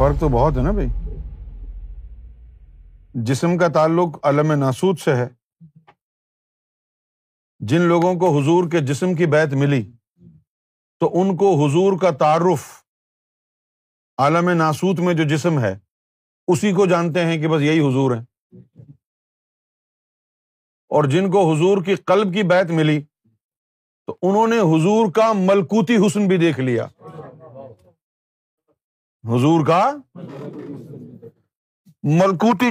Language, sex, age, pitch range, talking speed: Urdu, male, 50-69, 130-190 Hz, 120 wpm